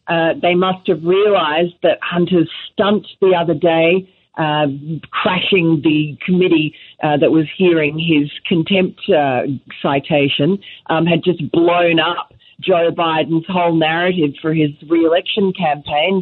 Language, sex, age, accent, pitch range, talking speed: English, female, 40-59, Australian, 145-180 Hz, 135 wpm